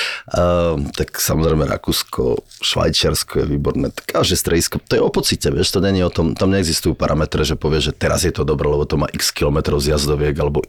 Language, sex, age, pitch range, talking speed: Slovak, male, 30-49, 75-85 Hz, 200 wpm